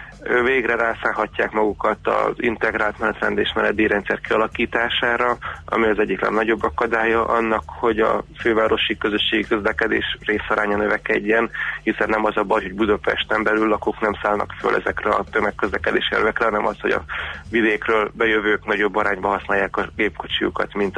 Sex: male